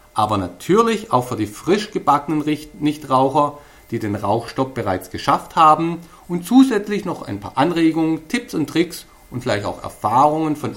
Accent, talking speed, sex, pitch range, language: German, 155 wpm, male, 125-180 Hz, German